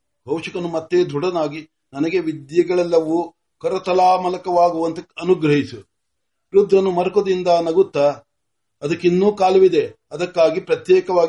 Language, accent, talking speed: Marathi, native, 55 wpm